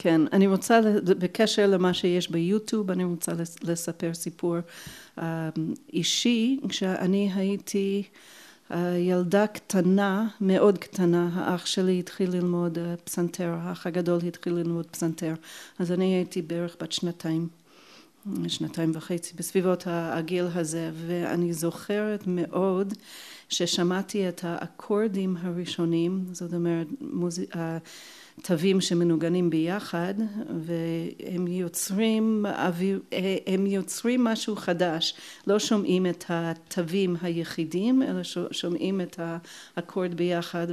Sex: female